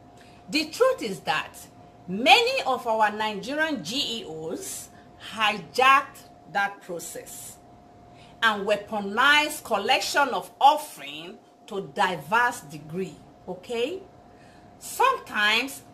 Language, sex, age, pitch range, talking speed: English, female, 50-69, 215-340 Hz, 85 wpm